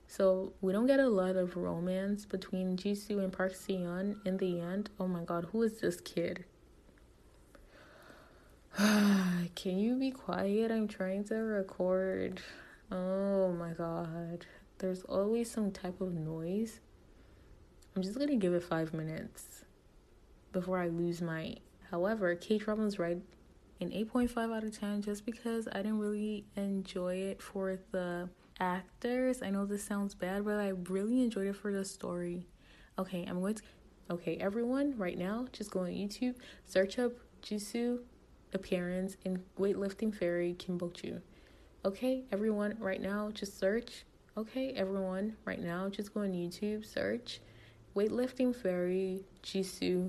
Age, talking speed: 20-39, 145 wpm